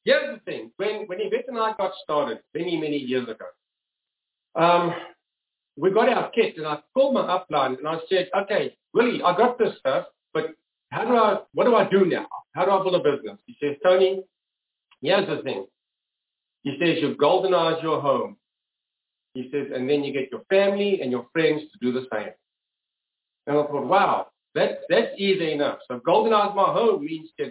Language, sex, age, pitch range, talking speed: English, male, 50-69, 140-195 Hz, 195 wpm